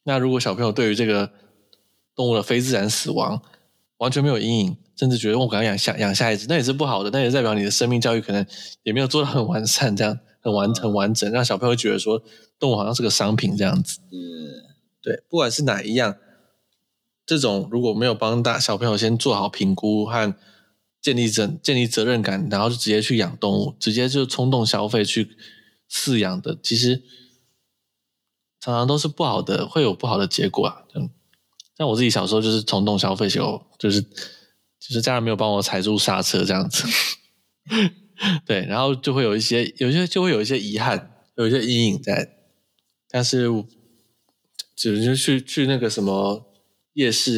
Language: Chinese